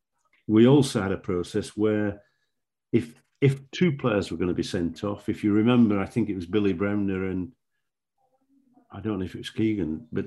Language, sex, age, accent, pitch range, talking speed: English, male, 50-69, British, 95-115 Hz, 200 wpm